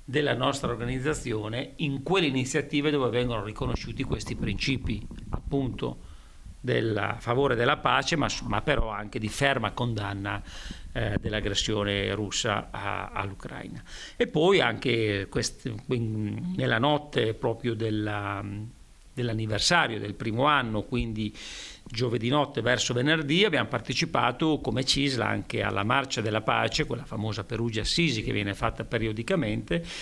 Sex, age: male, 50-69